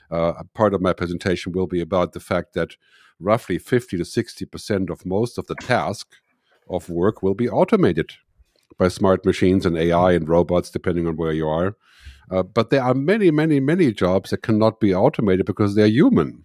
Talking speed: 195 wpm